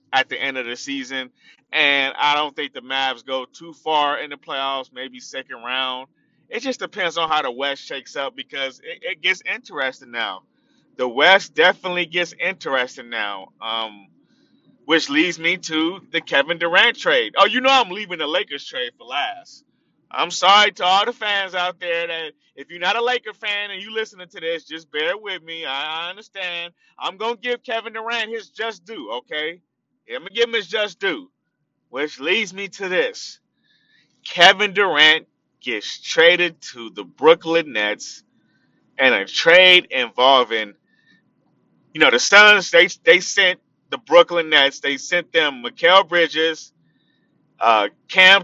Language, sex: English, male